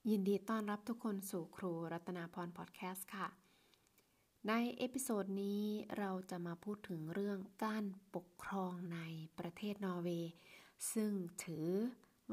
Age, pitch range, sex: 20-39, 170-200 Hz, female